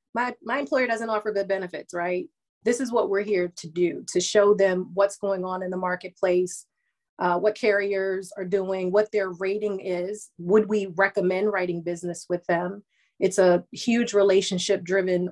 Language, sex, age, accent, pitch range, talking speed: English, female, 30-49, American, 185-215 Hz, 175 wpm